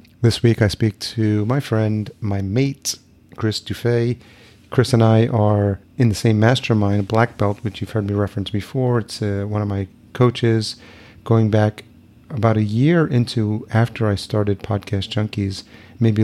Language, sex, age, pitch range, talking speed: English, male, 30-49, 105-115 Hz, 165 wpm